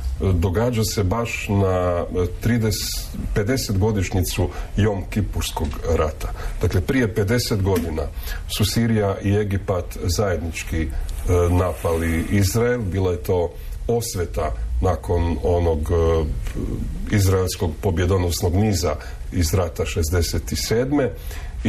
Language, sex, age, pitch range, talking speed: Croatian, male, 40-59, 85-105 Hz, 90 wpm